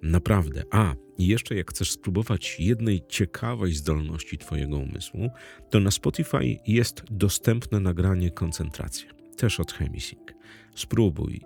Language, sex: Polish, male